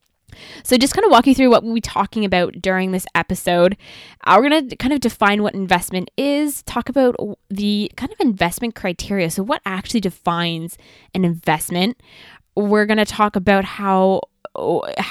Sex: female